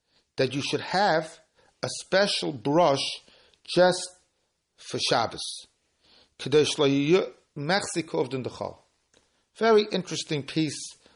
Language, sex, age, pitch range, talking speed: English, male, 60-79, 130-160 Hz, 95 wpm